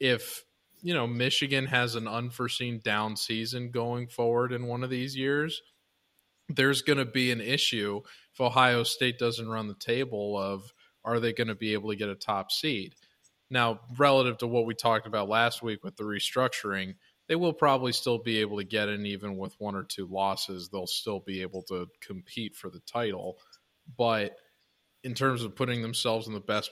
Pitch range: 100-125 Hz